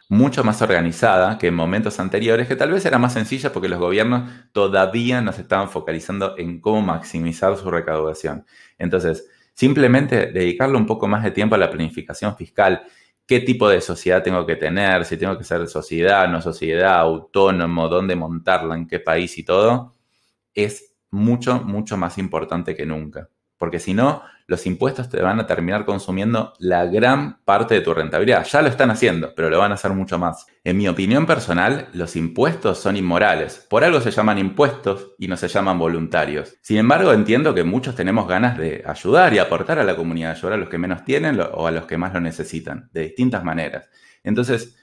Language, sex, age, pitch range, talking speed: Spanish, male, 20-39, 85-115 Hz, 195 wpm